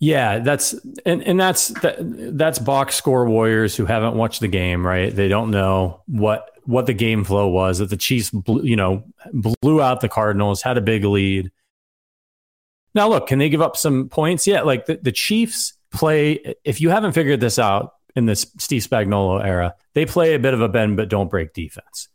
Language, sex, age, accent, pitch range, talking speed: English, male, 30-49, American, 105-150 Hz, 205 wpm